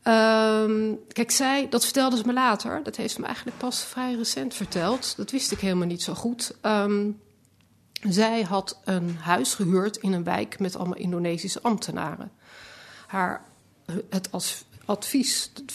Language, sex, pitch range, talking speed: Dutch, female, 180-215 Hz, 145 wpm